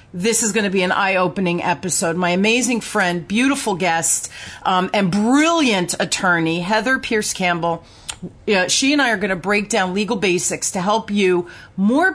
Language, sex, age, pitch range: English, female, 40-59, 180-225 Hz